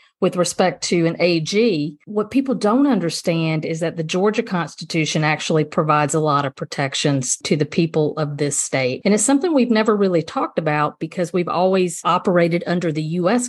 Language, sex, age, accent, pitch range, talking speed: English, female, 50-69, American, 160-205 Hz, 180 wpm